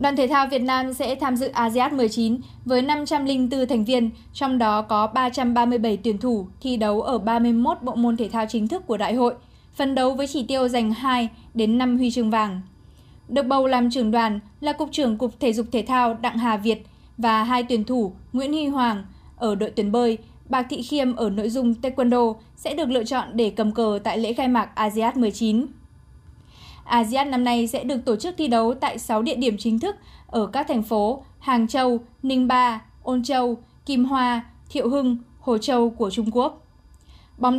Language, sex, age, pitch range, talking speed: Vietnamese, female, 20-39, 225-260 Hz, 205 wpm